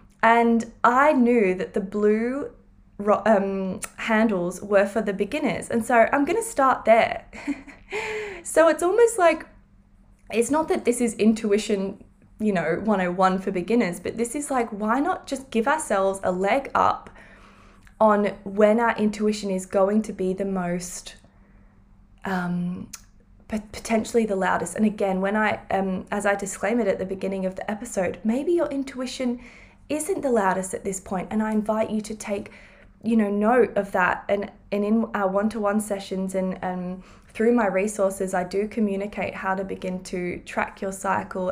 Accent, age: Australian, 20-39